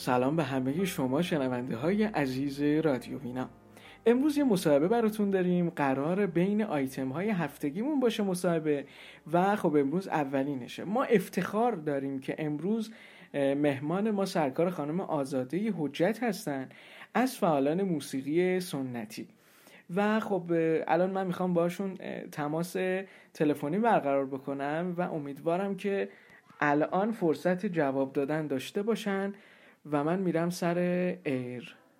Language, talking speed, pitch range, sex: Persian, 120 wpm, 140-190 Hz, male